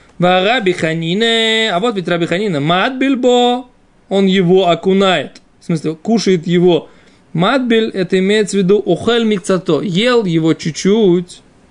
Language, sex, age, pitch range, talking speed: Russian, male, 20-39, 150-205 Hz, 110 wpm